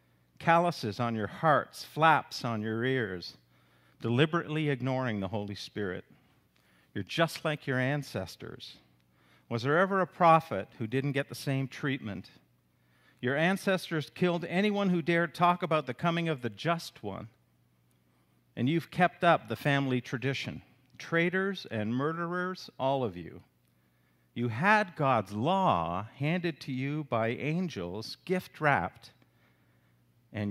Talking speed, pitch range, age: 130 wpm, 95-150 Hz, 50-69